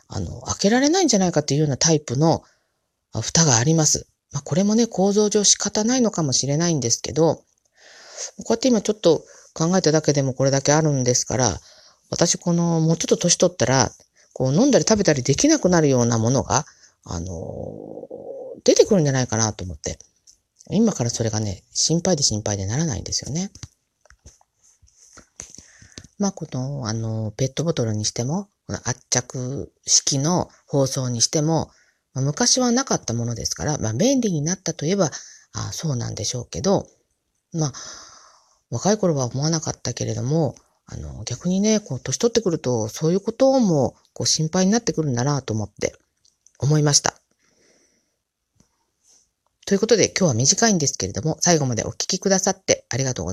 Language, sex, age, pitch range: Japanese, female, 40-59, 125-190 Hz